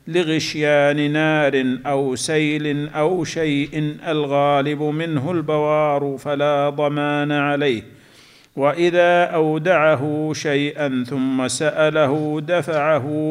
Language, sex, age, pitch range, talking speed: Arabic, male, 50-69, 140-155 Hz, 80 wpm